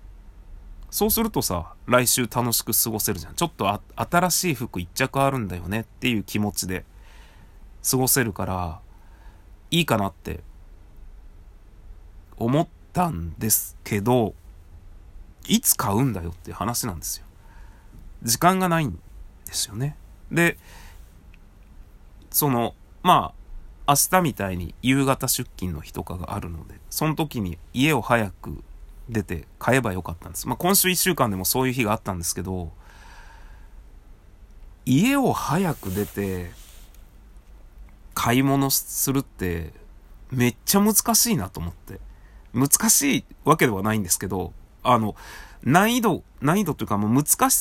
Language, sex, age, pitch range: Japanese, male, 30-49, 90-130 Hz